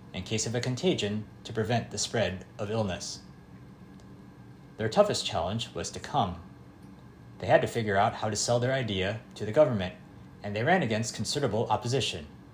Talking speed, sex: 170 wpm, male